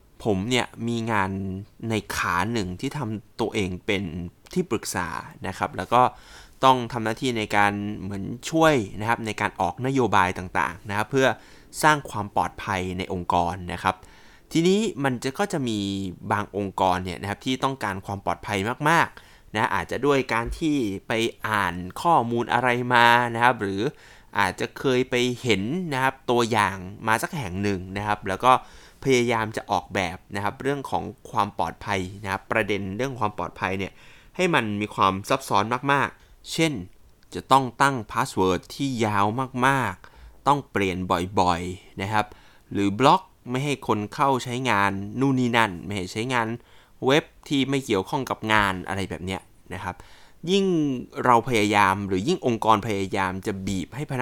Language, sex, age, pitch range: Thai, male, 20-39, 95-130 Hz